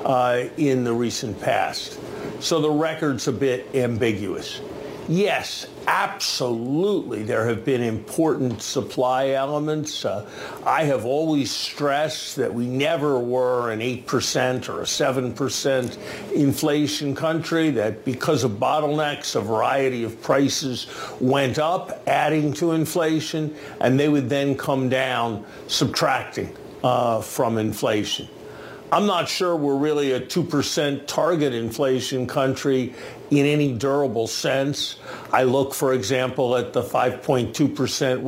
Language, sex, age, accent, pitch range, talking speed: English, male, 50-69, American, 125-145 Hz, 125 wpm